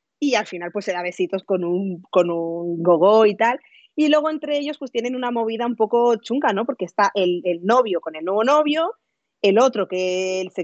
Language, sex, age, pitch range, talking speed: Spanish, female, 30-49, 185-260 Hz, 220 wpm